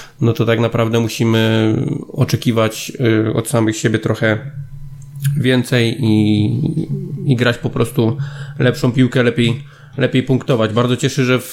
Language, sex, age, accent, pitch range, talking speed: Polish, male, 20-39, native, 115-130 Hz, 125 wpm